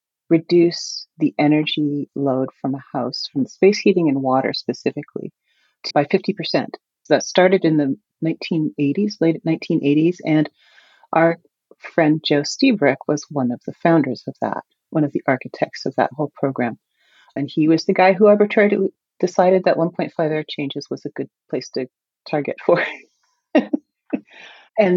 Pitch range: 150-195 Hz